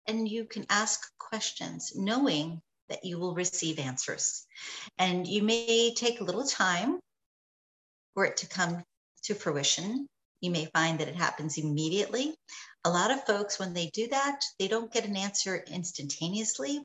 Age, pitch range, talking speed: 50-69, 175-230 Hz, 160 wpm